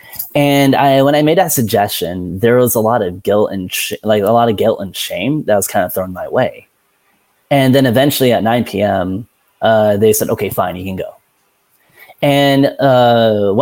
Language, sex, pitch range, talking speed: English, male, 100-130 Hz, 195 wpm